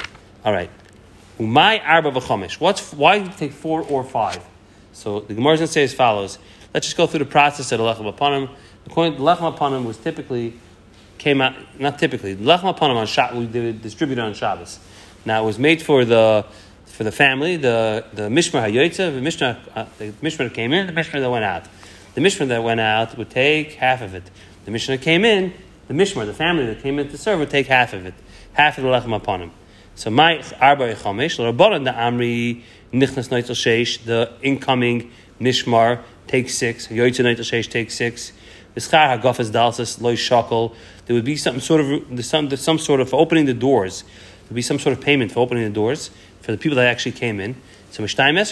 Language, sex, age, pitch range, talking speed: English, male, 30-49, 110-140 Hz, 205 wpm